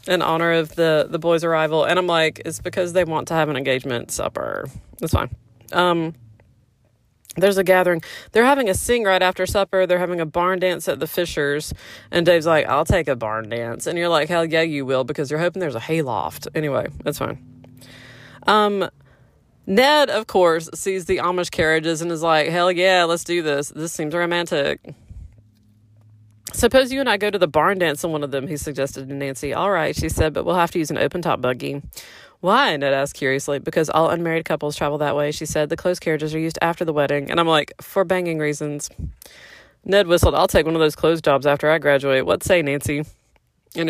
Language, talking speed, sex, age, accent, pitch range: English, 210 wpm, female, 20-39, American, 140-175 Hz